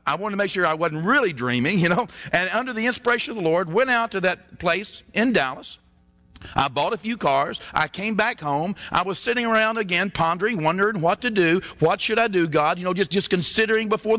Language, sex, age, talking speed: English, male, 50-69, 235 wpm